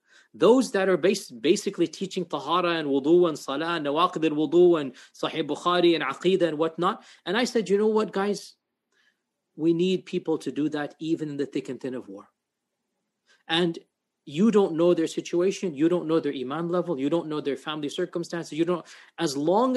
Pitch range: 155-195 Hz